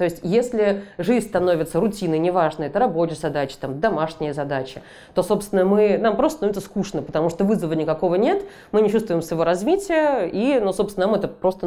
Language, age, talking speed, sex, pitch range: Russian, 20-39, 185 wpm, female, 160-210 Hz